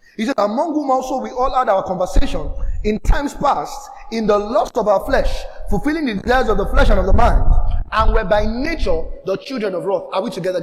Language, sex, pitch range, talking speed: English, male, 210-300 Hz, 225 wpm